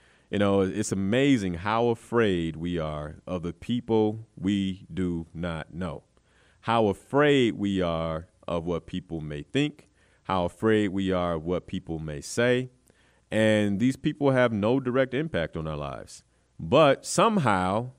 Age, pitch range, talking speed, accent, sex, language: 30-49, 90-120 Hz, 150 wpm, American, male, English